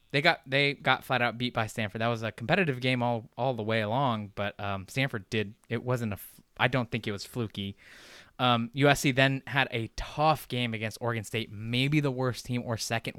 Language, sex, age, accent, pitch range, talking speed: English, male, 20-39, American, 110-140 Hz, 220 wpm